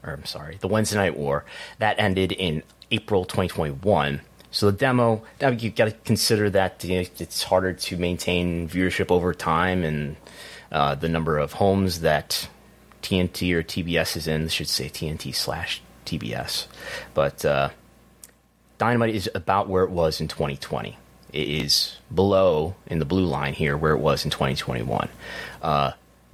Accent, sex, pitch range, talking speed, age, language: American, male, 75-95 Hz, 155 wpm, 30-49, English